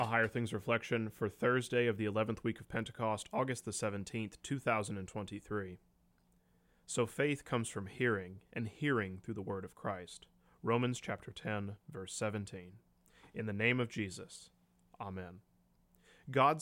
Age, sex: 30-49, male